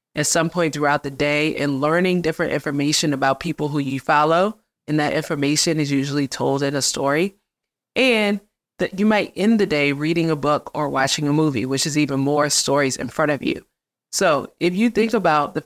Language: English